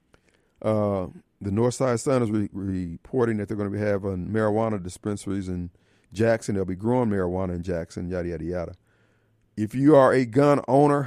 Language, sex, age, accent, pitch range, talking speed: English, male, 40-59, American, 105-155 Hz, 180 wpm